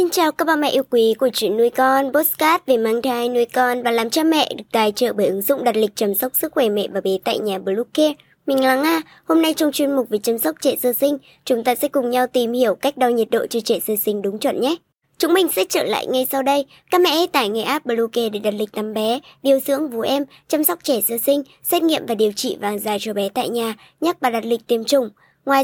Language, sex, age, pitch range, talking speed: Vietnamese, male, 20-39, 235-290 Hz, 275 wpm